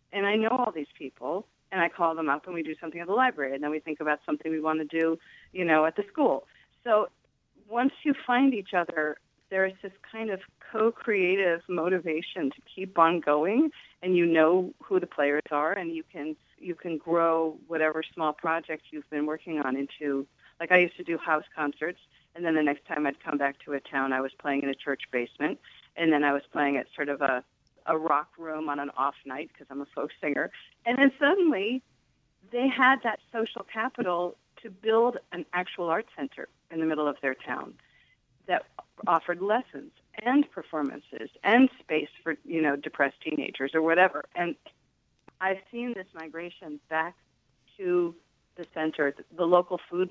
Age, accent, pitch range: 40-59, American, 150-190 Hz